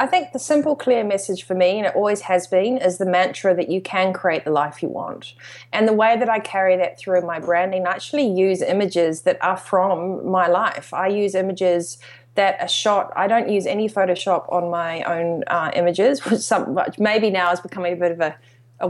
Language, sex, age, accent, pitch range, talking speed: English, female, 20-39, Australian, 175-195 Hz, 225 wpm